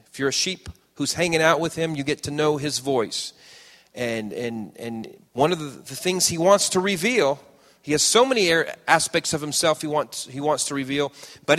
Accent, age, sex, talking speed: American, 40-59, male, 210 wpm